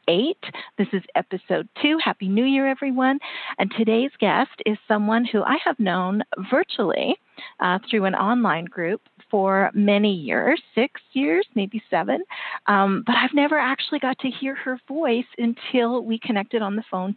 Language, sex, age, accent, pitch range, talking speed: English, female, 40-59, American, 200-255 Hz, 165 wpm